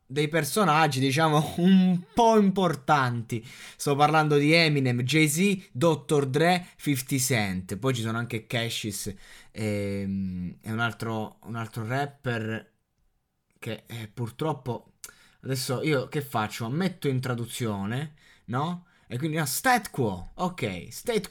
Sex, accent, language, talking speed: male, native, Italian, 125 wpm